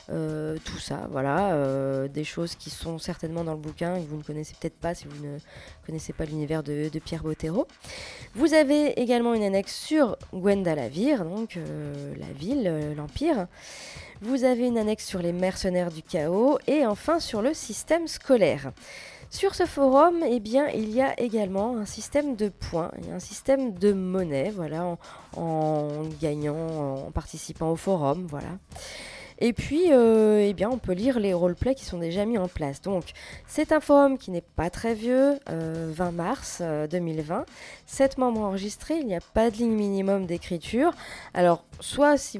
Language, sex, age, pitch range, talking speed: French, female, 20-39, 160-230 Hz, 180 wpm